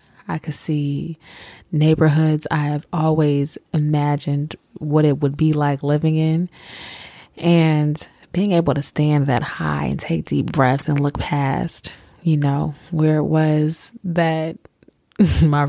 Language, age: English, 20-39